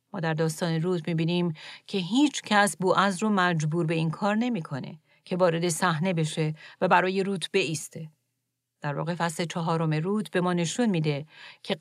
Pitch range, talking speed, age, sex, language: 155-195 Hz, 175 wpm, 40-59, female, Persian